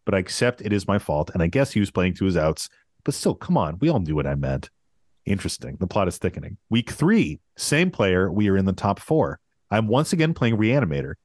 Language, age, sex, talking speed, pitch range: English, 30-49, male, 245 wpm, 95-135 Hz